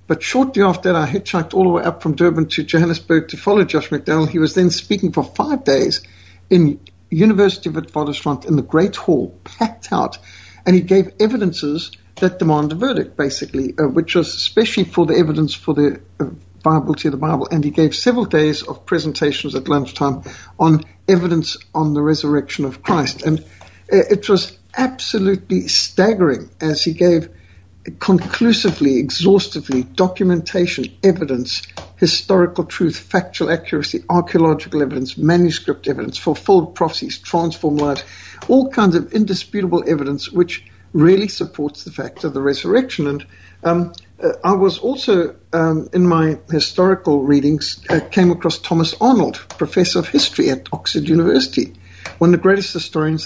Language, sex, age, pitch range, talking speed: English, male, 60-79, 145-185 Hz, 155 wpm